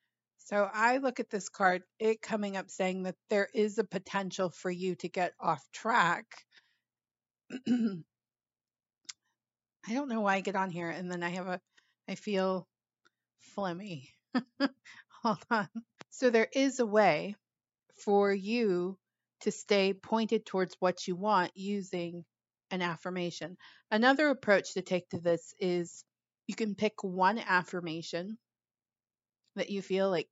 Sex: female